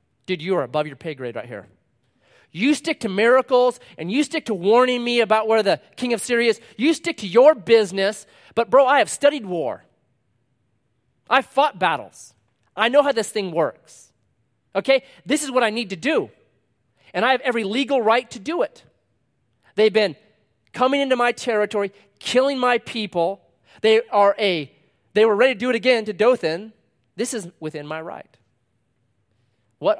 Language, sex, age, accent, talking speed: English, male, 30-49, American, 175 wpm